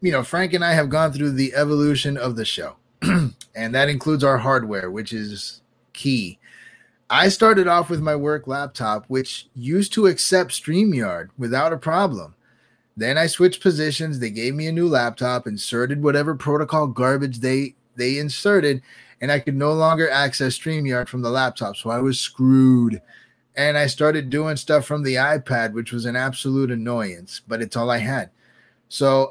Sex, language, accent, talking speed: male, English, American, 175 wpm